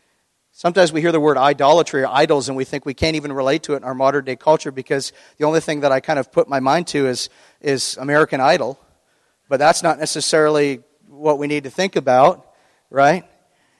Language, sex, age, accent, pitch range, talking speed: English, male, 40-59, American, 140-170 Hz, 215 wpm